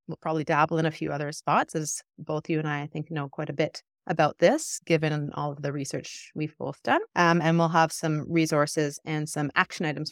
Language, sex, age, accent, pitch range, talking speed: English, female, 30-49, American, 155-190 Hz, 230 wpm